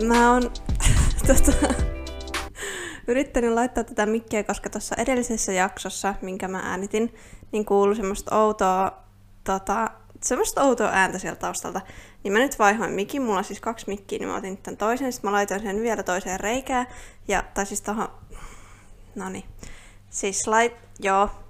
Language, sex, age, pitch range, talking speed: Finnish, female, 20-39, 190-225 Hz, 140 wpm